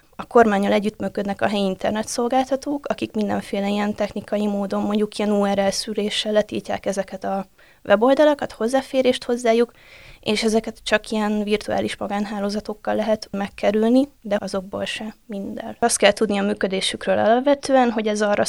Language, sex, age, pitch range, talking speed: Hungarian, female, 20-39, 200-225 Hz, 135 wpm